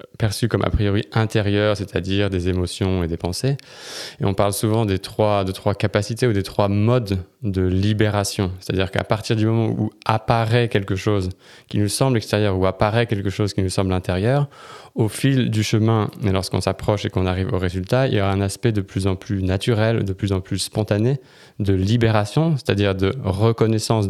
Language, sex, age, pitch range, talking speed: French, male, 20-39, 95-115 Hz, 195 wpm